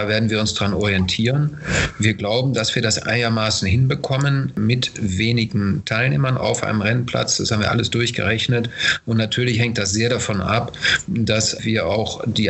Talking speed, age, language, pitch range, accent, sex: 165 wpm, 40-59, German, 105-120 Hz, German, male